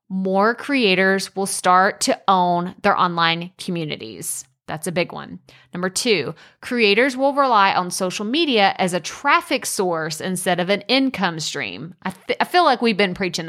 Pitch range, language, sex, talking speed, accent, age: 180-230 Hz, English, female, 165 wpm, American, 20-39